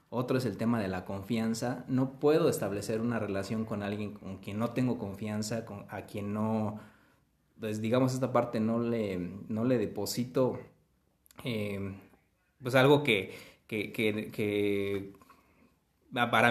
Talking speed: 145 wpm